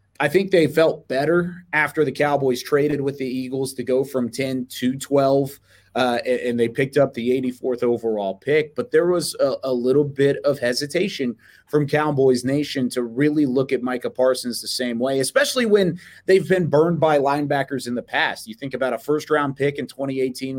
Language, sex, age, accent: English, male, 30-49, American